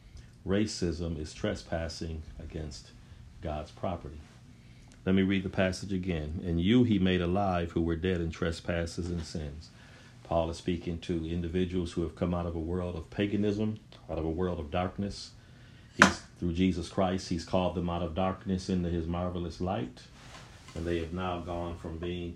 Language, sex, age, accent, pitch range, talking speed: English, male, 40-59, American, 85-100 Hz, 175 wpm